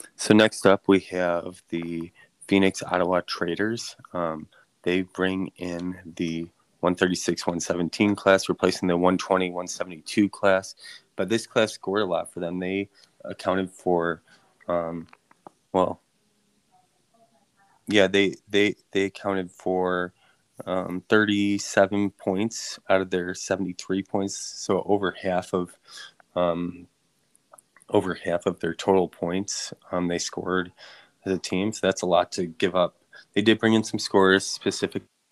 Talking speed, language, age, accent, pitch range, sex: 145 wpm, English, 20-39, American, 90-100 Hz, male